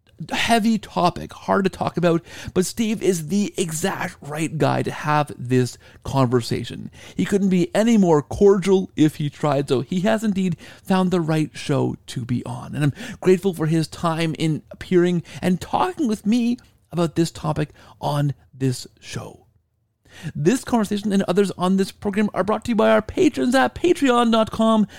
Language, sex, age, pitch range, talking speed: English, male, 40-59, 150-215 Hz, 170 wpm